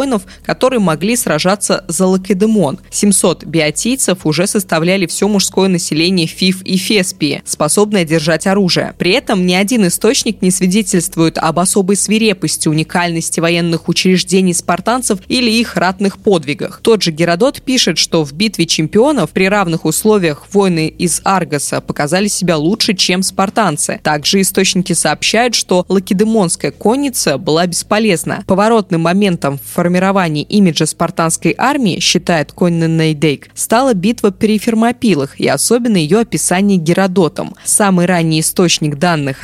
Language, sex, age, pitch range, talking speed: Russian, female, 20-39, 165-210 Hz, 130 wpm